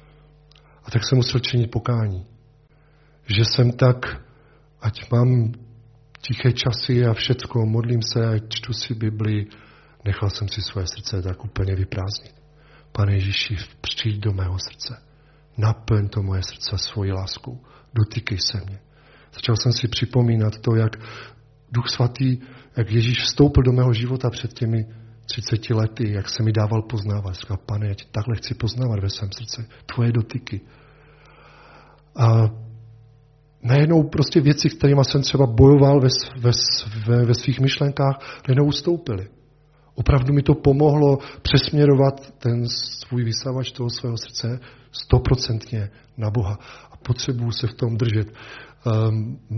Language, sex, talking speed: Czech, male, 135 wpm